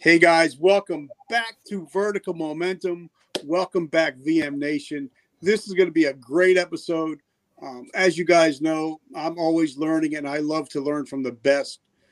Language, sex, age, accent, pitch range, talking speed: English, male, 50-69, American, 135-165 Hz, 175 wpm